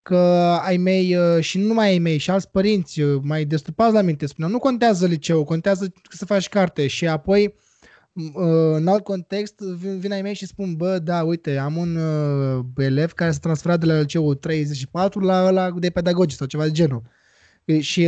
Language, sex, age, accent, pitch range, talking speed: Romanian, male, 20-39, native, 155-195 Hz, 185 wpm